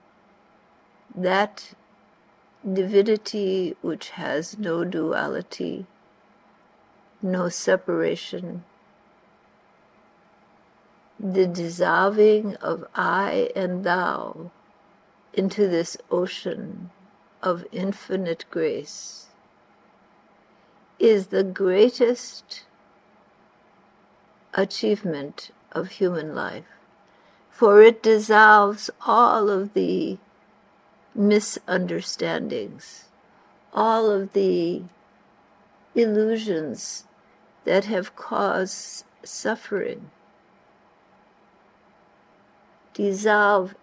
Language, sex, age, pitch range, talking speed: English, female, 60-79, 185-210 Hz, 60 wpm